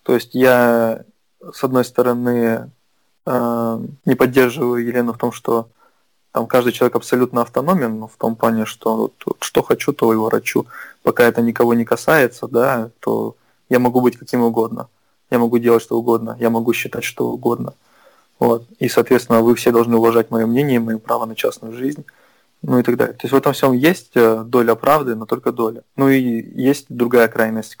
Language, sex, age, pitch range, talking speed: Russian, male, 20-39, 115-125 Hz, 175 wpm